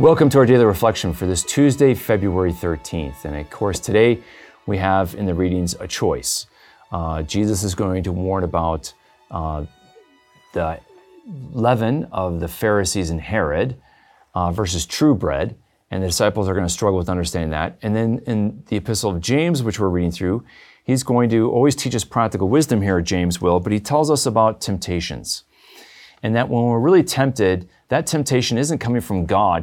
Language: English